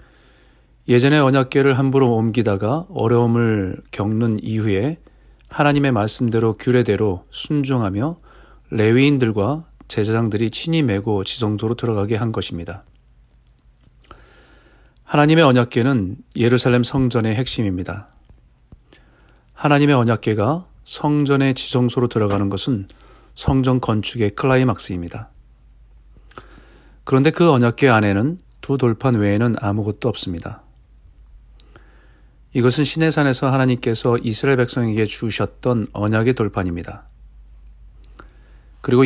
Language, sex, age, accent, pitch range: Korean, male, 40-59, native, 105-130 Hz